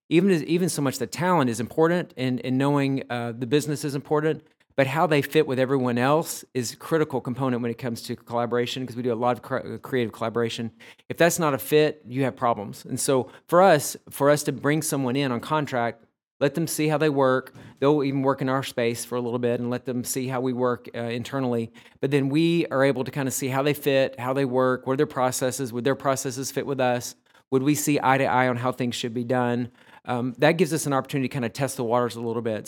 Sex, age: male, 40-59